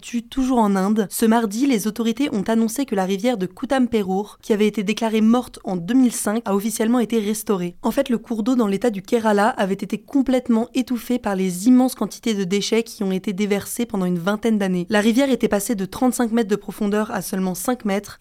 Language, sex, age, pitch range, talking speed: French, female, 20-39, 200-235 Hz, 215 wpm